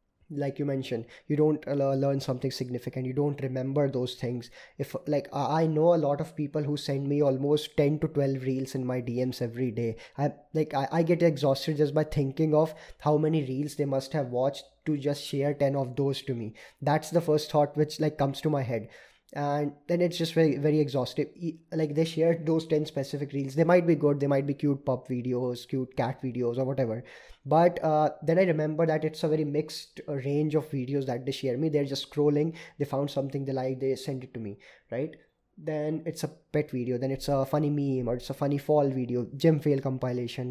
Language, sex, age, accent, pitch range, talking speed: Hindi, male, 20-39, native, 130-150 Hz, 220 wpm